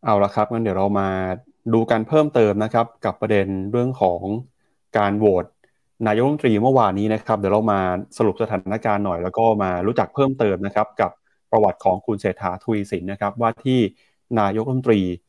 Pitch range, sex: 100-120 Hz, male